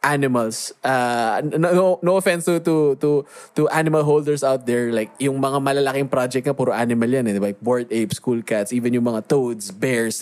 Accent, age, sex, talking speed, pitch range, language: native, 20-39, male, 195 wpm, 130-155 Hz, Filipino